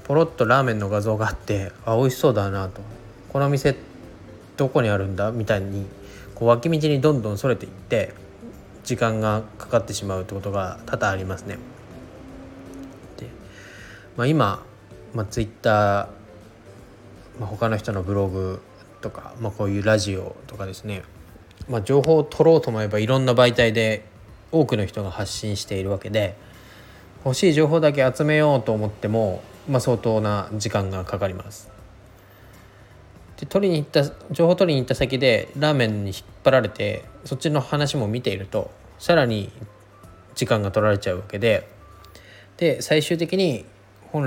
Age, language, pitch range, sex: 20-39, Japanese, 100-125 Hz, male